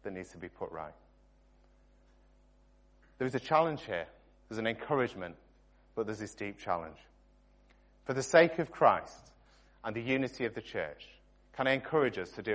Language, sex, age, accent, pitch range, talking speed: English, male, 30-49, British, 95-130 Hz, 170 wpm